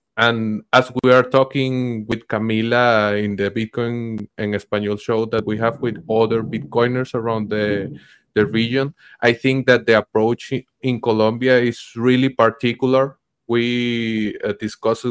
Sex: male